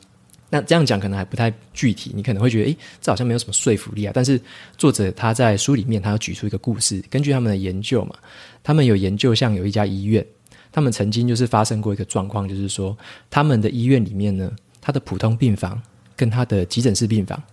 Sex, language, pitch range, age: male, Chinese, 105-125 Hz, 20-39